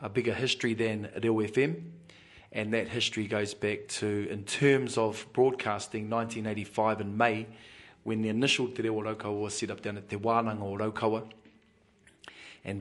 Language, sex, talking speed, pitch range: English, male, 160 wpm, 105-120 Hz